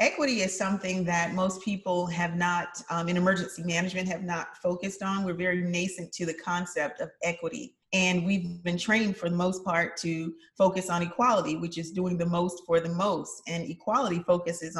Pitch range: 170-190 Hz